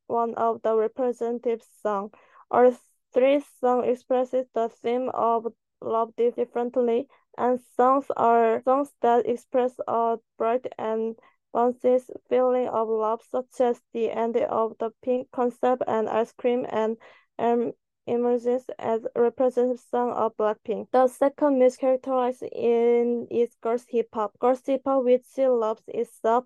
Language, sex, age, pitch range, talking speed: English, female, 20-39, 230-255 Hz, 140 wpm